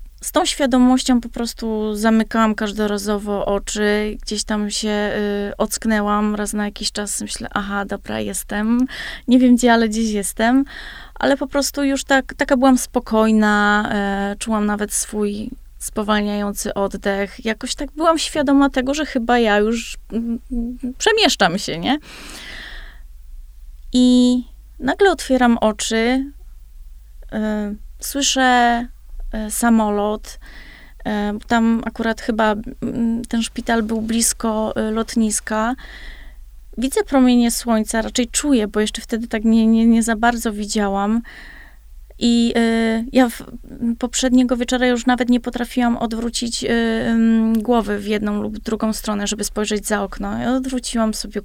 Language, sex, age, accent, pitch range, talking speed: Polish, female, 20-39, native, 210-250 Hz, 125 wpm